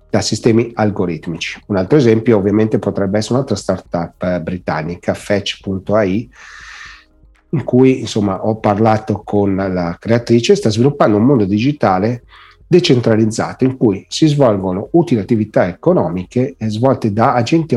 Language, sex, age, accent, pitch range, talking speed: Italian, male, 40-59, native, 95-125 Hz, 125 wpm